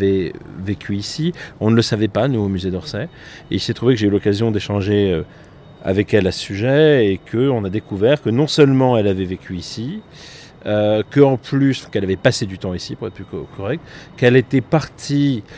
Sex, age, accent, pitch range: male, 40-59, French, 100-125 Hz